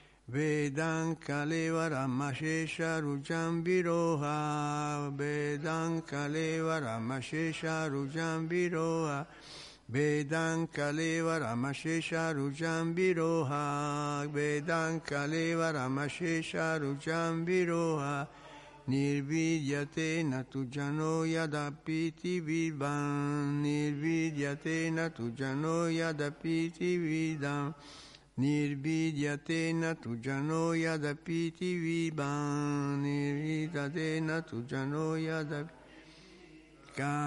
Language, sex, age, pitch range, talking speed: Italian, male, 60-79, 140-160 Hz, 60 wpm